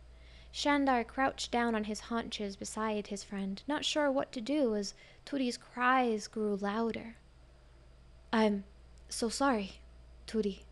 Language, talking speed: English, 130 wpm